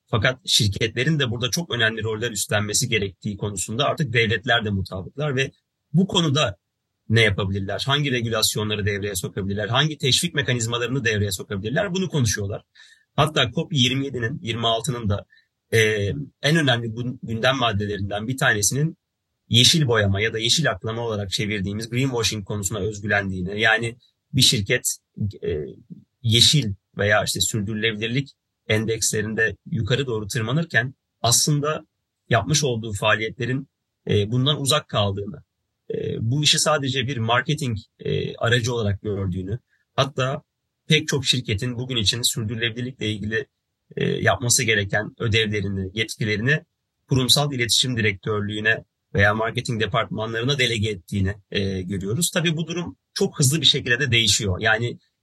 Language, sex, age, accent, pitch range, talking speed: Turkish, male, 30-49, native, 105-135 Hz, 120 wpm